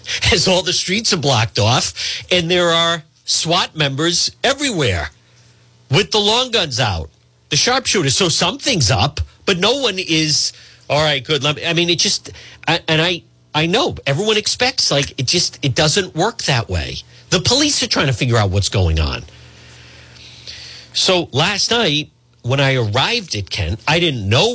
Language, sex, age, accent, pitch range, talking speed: English, male, 50-69, American, 90-150 Hz, 170 wpm